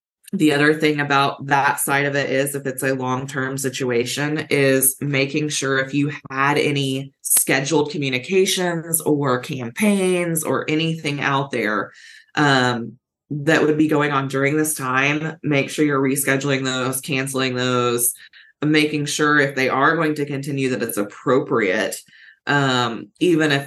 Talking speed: 150 wpm